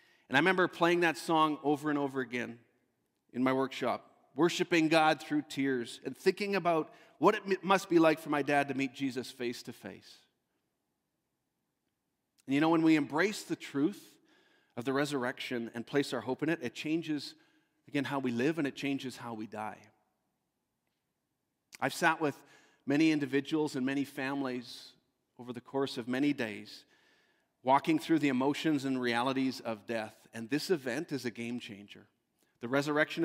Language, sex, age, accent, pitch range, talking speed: English, male, 40-59, American, 130-165 Hz, 170 wpm